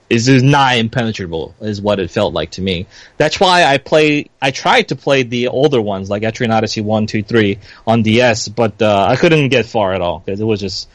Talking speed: 230 wpm